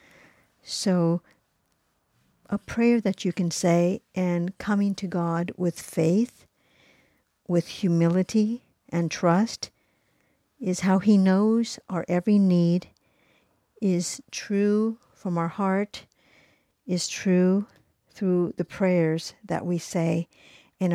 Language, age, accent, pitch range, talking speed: English, 60-79, American, 170-200 Hz, 110 wpm